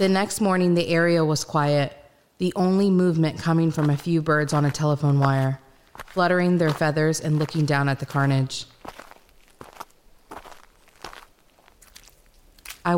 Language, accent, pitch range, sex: English, American, 145-170 Hz, female